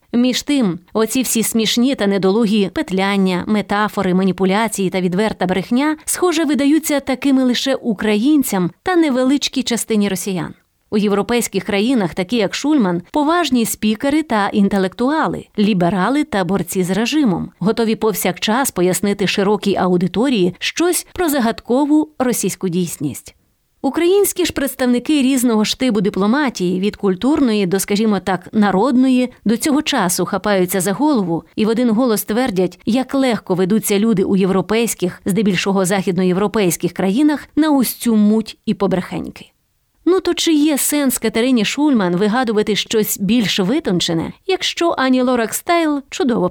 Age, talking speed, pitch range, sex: 30-49, 130 wpm, 195-265 Hz, female